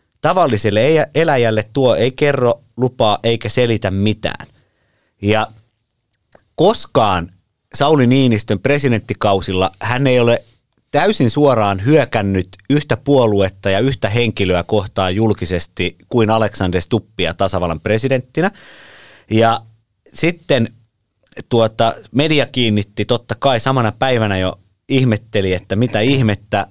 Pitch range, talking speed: 100-120 Hz, 105 wpm